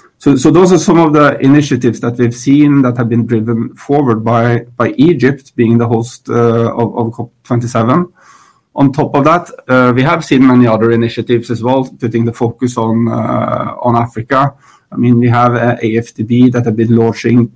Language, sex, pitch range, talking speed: English, male, 115-130 Hz, 200 wpm